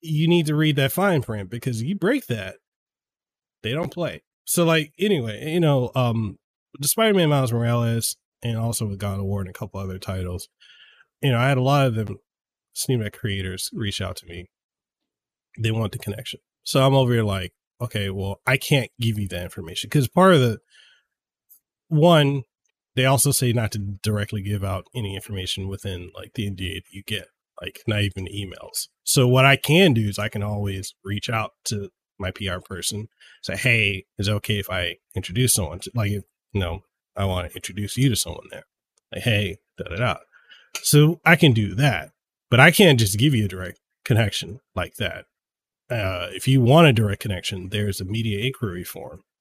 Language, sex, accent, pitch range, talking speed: English, male, American, 100-130 Hz, 190 wpm